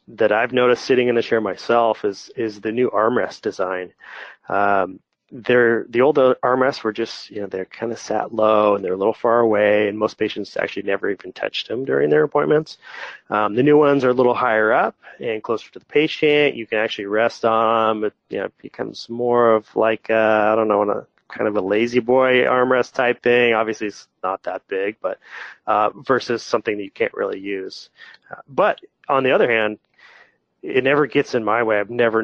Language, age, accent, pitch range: English, 30-49, American, 105-125 Hz